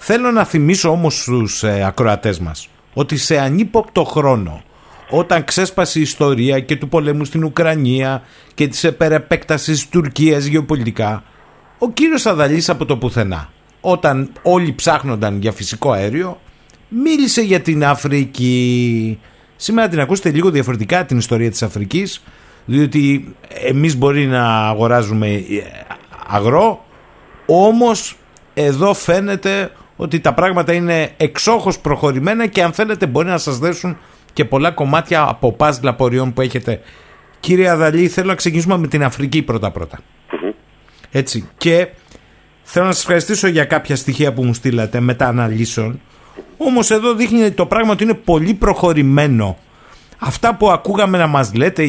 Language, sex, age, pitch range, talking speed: Greek, male, 50-69, 125-180 Hz, 140 wpm